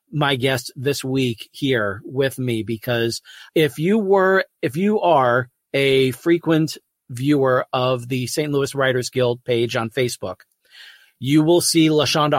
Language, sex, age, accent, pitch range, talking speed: English, male, 40-59, American, 125-155 Hz, 145 wpm